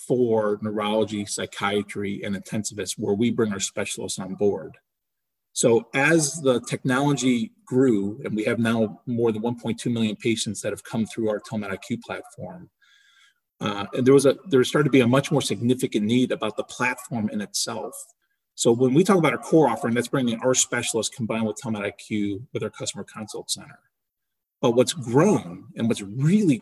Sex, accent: male, American